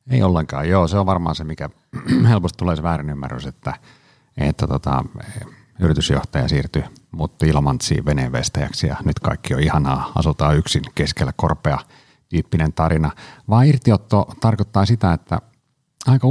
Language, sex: Finnish, male